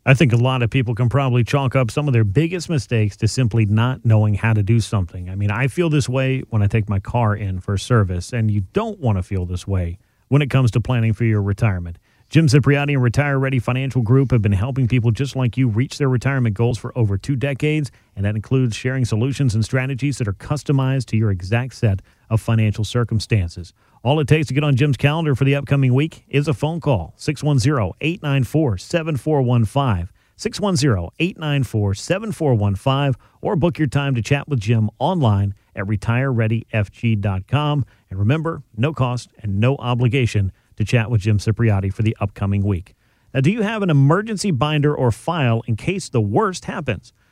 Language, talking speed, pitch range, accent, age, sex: English, 190 wpm, 110-140 Hz, American, 40-59, male